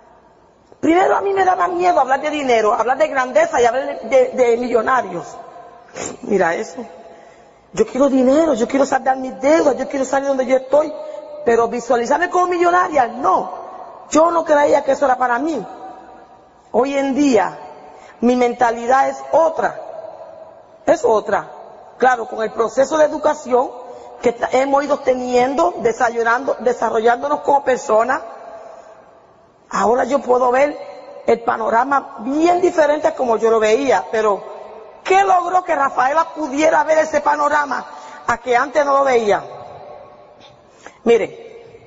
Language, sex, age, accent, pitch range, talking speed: Spanish, female, 40-59, American, 230-295 Hz, 145 wpm